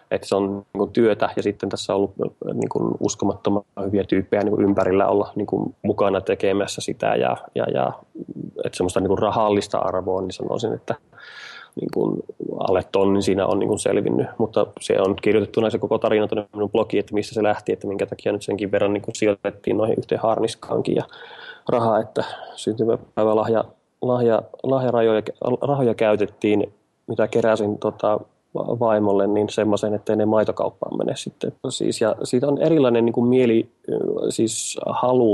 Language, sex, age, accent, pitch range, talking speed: Finnish, male, 20-39, native, 100-110 Hz, 150 wpm